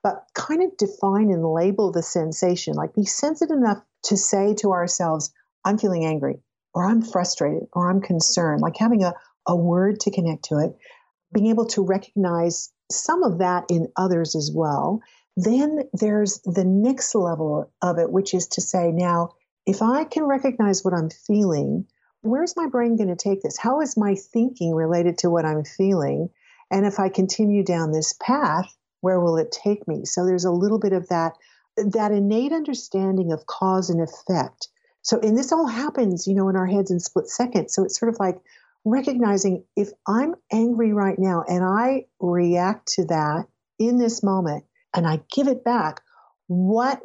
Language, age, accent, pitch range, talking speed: English, 50-69, American, 175-220 Hz, 185 wpm